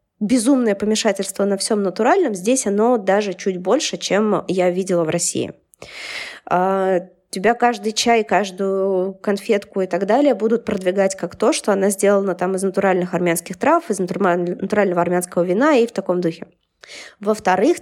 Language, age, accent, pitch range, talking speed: Russian, 20-39, native, 190-240 Hz, 150 wpm